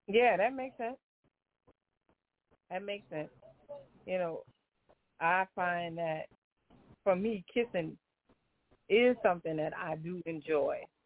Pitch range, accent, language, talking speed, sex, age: 150-200 Hz, American, English, 115 wpm, female, 40-59